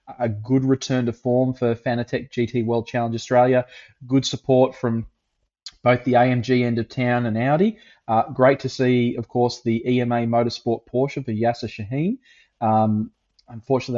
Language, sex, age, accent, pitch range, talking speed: English, male, 20-39, Australian, 115-135 Hz, 160 wpm